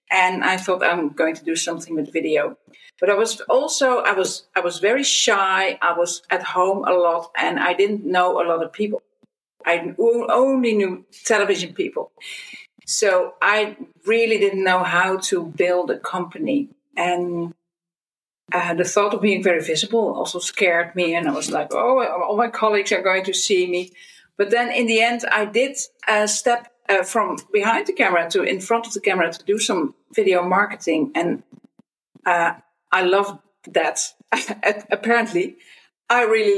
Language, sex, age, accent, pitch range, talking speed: English, female, 50-69, Dutch, 180-235 Hz, 175 wpm